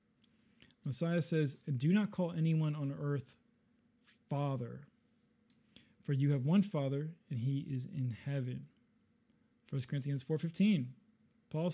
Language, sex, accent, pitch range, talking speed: English, male, American, 140-170 Hz, 125 wpm